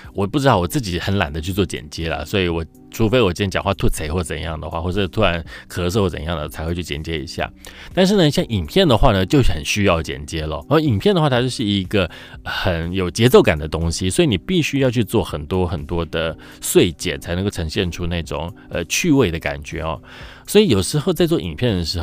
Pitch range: 85-120 Hz